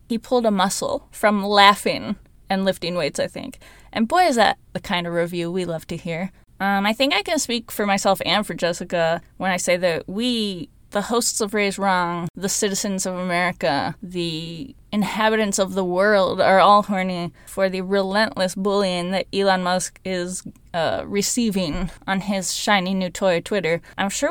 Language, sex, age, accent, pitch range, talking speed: English, female, 20-39, American, 180-220 Hz, 185 wpm